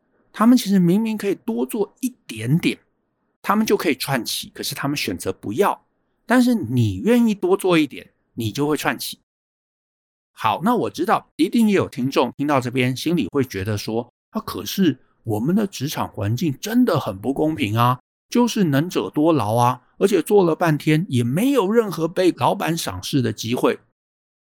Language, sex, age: Chinese, male, 60-79